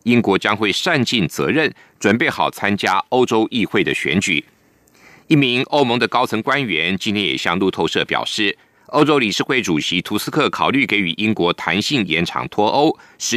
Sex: male